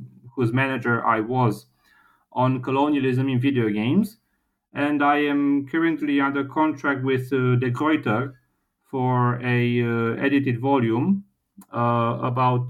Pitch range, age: 115-140 Hz, 40-59